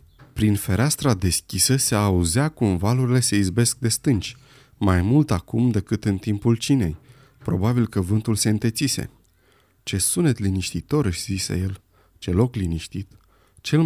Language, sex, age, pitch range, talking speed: Romanian, male, 30-49, 95-125 Hz, 145 wpm